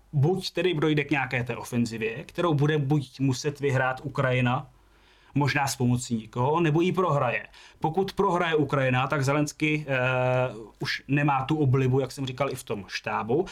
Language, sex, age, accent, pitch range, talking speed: Czech, male, 20-39, native, 125-140 Hz, 165 wpm